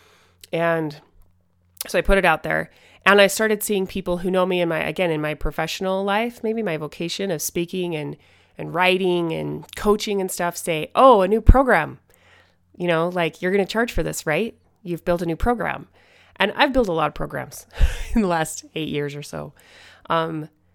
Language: English